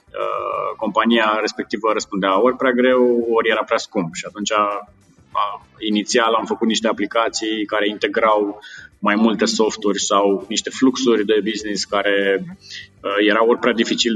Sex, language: male, Romanian